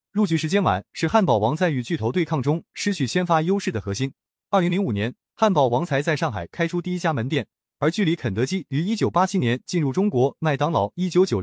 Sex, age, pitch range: male, 20-39, 130-185 Hz